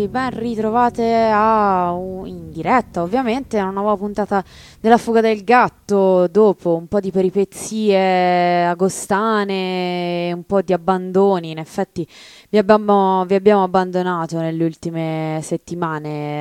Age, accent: 20-39, native